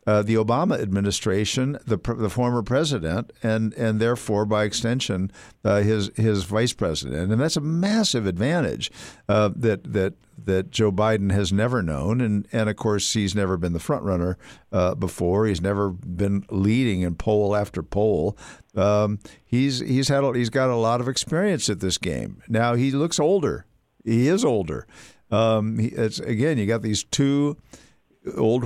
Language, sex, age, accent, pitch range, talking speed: English, male, 60-79, American, 100-125 Hz, 170 wpm